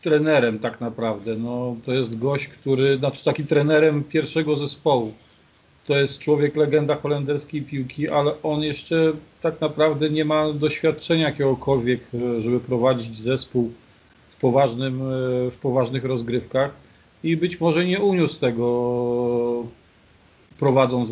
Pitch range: 125-150 Hz